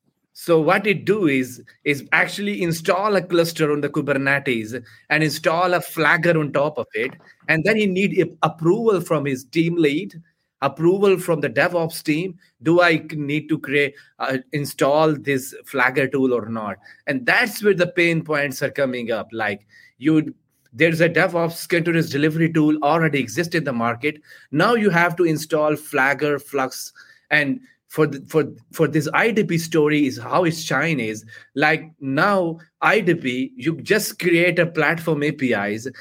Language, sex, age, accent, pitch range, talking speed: English, male, 30-49, Indian, 135-170 Hz, 165 wpm